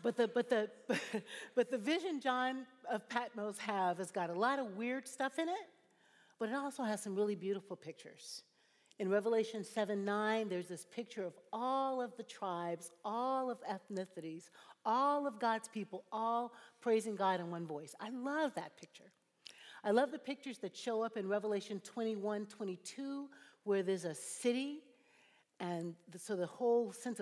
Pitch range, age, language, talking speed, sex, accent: 185-245 Hz, 50-69, English, 165 wpm, female, American